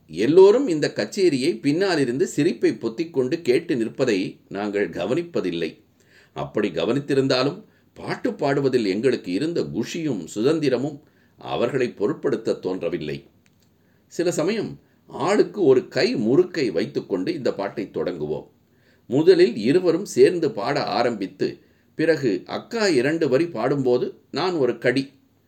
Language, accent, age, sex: Tamil, native, 50-69, male